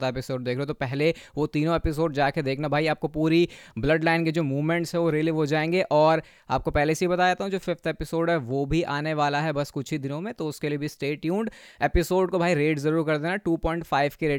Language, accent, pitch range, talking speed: Hindi, native, 145-180 Hz, 110 wpm